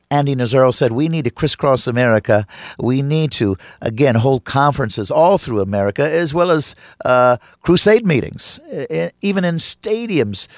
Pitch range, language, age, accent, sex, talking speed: 115-160 Hz, English, 50-69, American, male, 145 wpm